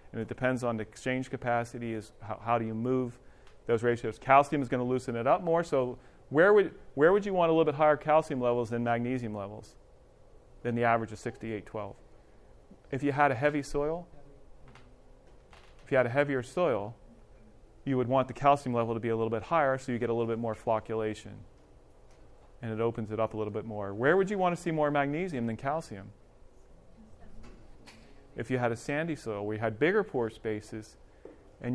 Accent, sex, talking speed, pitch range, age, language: American, male, 200 wpm, 110-135 Hz, 30-49, English